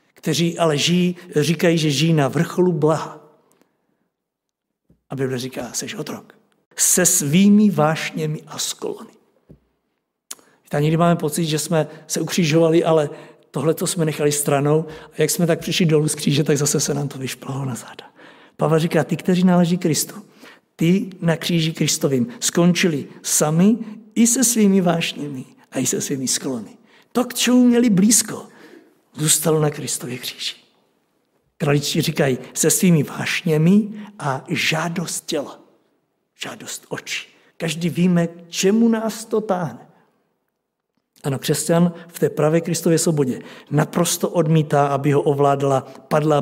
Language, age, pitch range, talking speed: Czech, 60-79, 150-185 Hz, 140 wpm